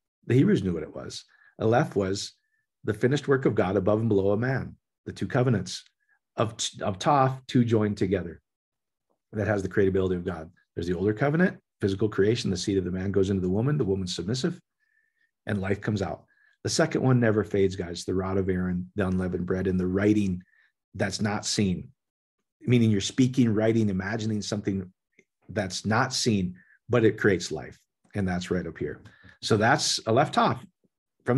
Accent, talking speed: American, 185 wpm